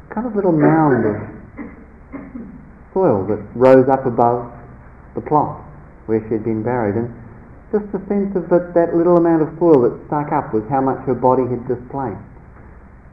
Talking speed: 175 wpm